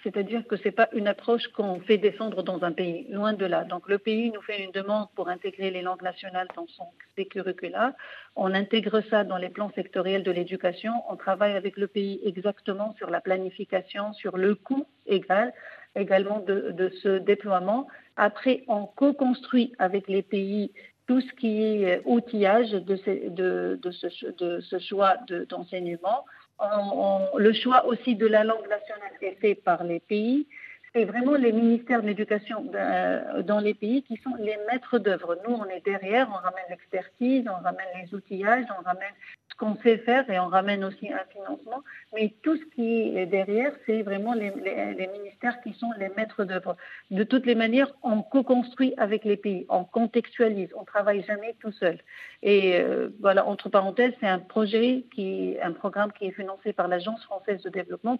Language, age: French, 50-69